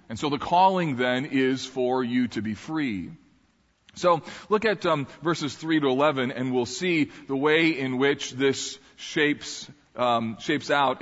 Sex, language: male, English